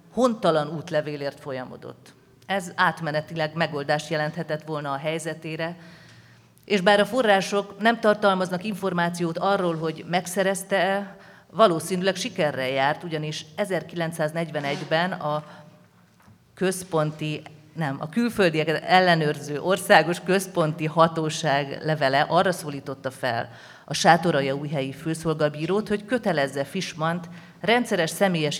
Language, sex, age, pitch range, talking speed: Hungarian, female, 40-59, 150-185 Hz, 95 wpm